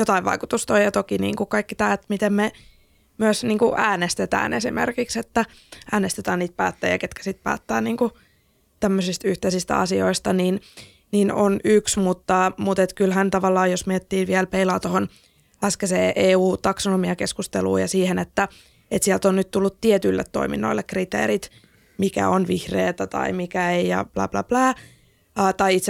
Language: Finnish